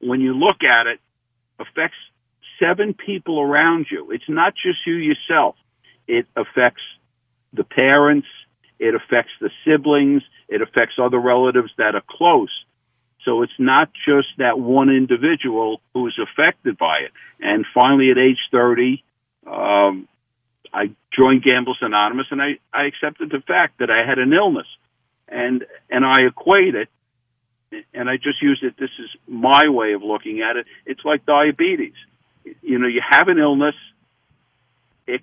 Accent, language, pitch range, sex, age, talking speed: American, English, 120-145 Hz, male, 60-79, 155 wpm